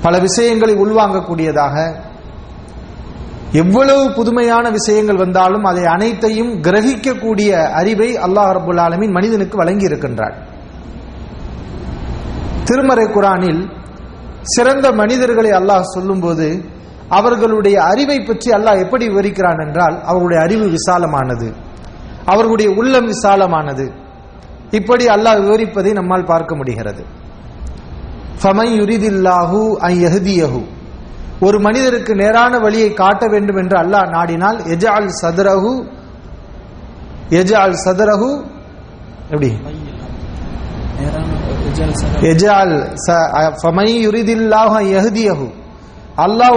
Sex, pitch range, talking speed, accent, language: male, 170-220 Hz, 80 wpm, Indian, English